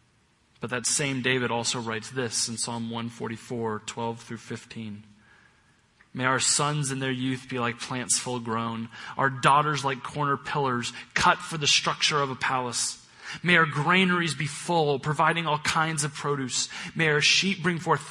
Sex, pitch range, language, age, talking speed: male, 120-155 Hz, English, 30-49, 170 wpm